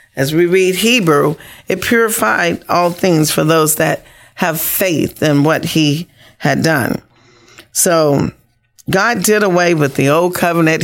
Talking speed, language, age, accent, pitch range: 145 wpm, English, 40-59, American, 145-185 Hz